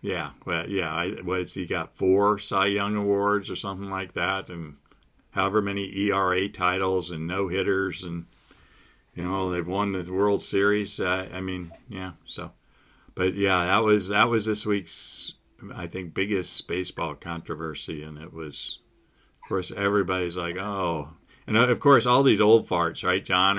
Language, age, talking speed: English, 50-69, 165 wpm